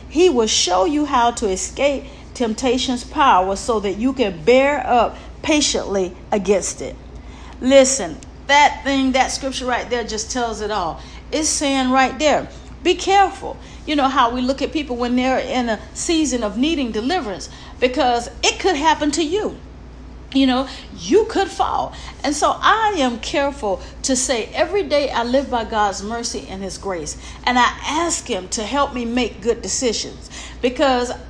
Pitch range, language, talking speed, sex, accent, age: 220-295 Hz, English, 170 wpm, female, American, 50-69